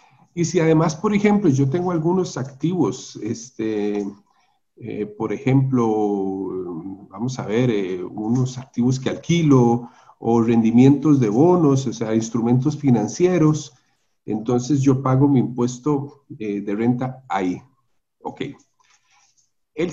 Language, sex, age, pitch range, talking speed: Spanish, male, 50-69, 120-155 Hz, 115 wpm